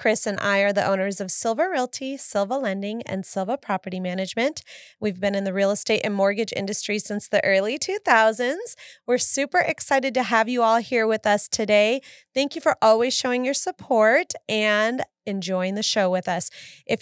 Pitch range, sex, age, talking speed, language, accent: 195-255 Hz, female, 30-49, 185 wpm, English, American